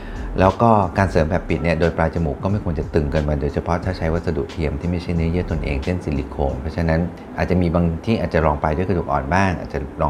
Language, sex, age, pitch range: Thai, male, 30-49, 75-90 Hz